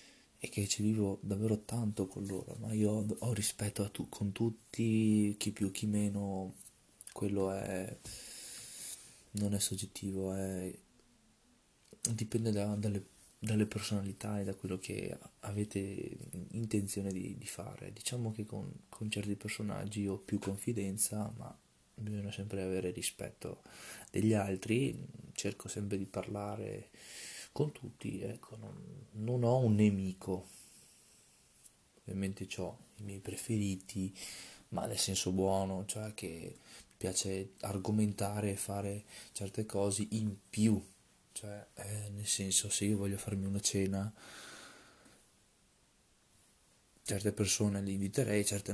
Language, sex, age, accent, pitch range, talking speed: Italian, male, 20-39, native, 95-110 Hz, 120 wpm